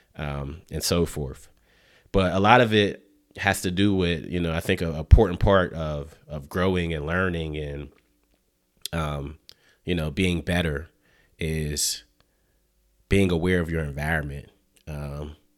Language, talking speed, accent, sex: English, 145 wpm, American, male